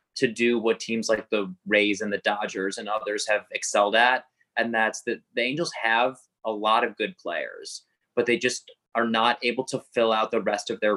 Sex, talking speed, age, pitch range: male, 215 wpm, 20-39, 105-120 Hz